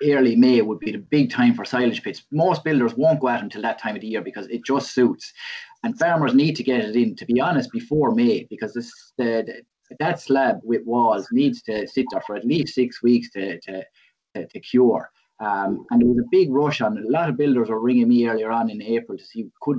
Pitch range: 115-170 Hz